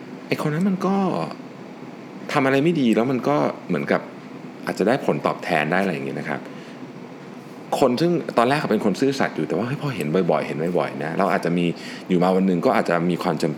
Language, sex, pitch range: Thai, male, 85-120 Hz